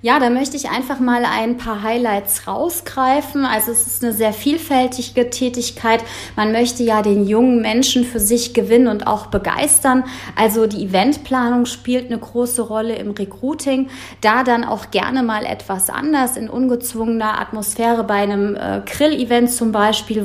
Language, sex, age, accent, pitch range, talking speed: German, female, 30-49, German, 210-245 Hz, 155 wpm